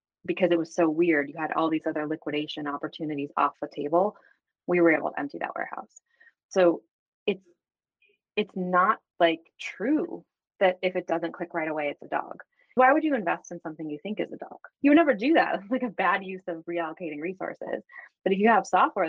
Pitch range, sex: 155-205 Hz, female